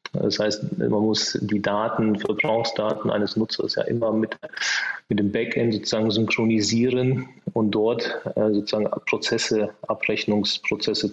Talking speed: 120 wpm